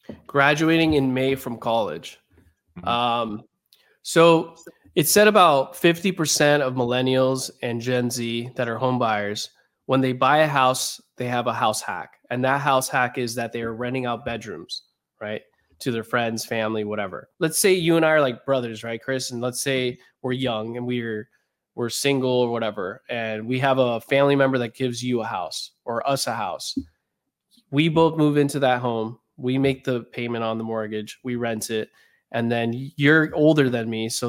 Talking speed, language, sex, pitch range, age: 185 wpm, English, male, 115-135 Hz, 20-39